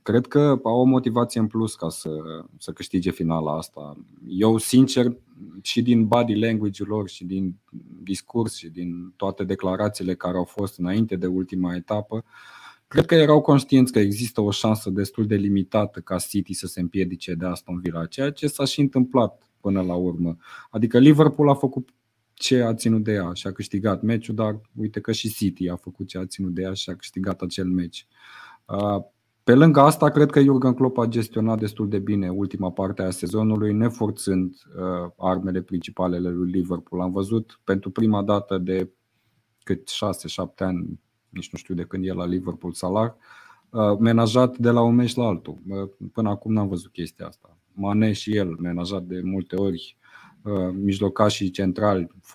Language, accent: Romanian, native